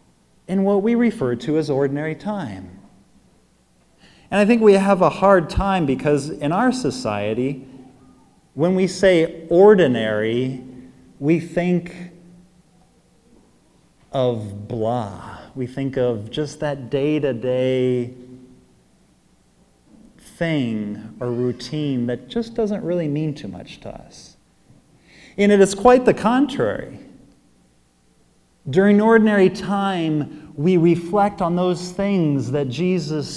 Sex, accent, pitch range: male, American, 115-175 Hz